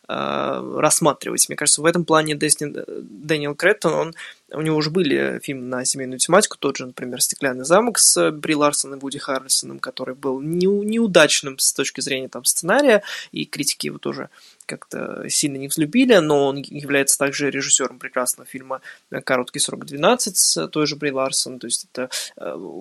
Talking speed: 165 wpm